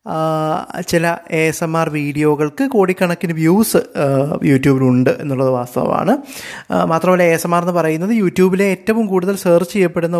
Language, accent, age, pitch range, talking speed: Malayalam, native, 20-39, 140-170 Hz, 135 wpm